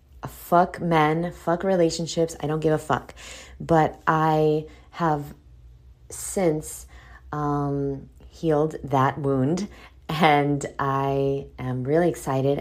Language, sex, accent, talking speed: English, female, American, 105 wpm